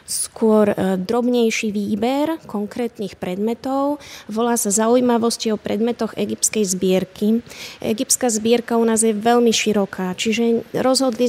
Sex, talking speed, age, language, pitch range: female, 110 wpm, 20-39, Slovak, 205-240 Hz